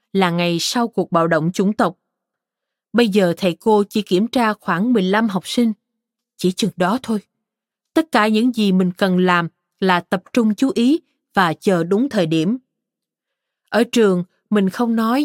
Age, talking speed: 20-39, 175 wpm